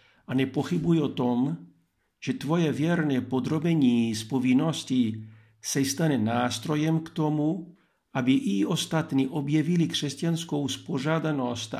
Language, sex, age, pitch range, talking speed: Czech, male, 50-69, 120-145 Hz, 100 wpm